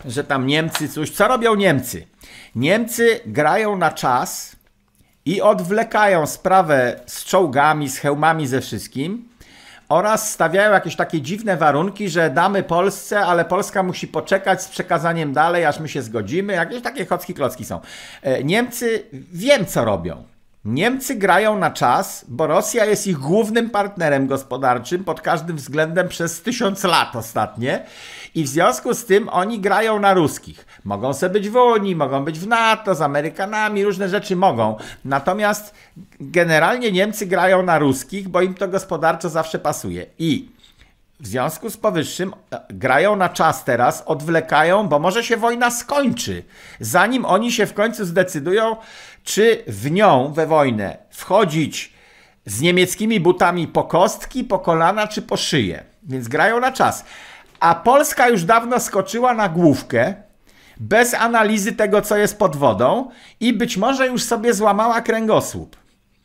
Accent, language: native, Polish